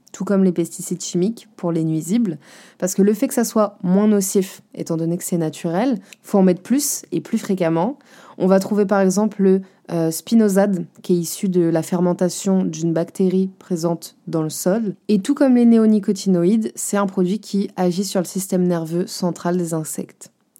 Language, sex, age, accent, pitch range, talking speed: French, female, 20-39, French, 180-220 Hz, 190 wpm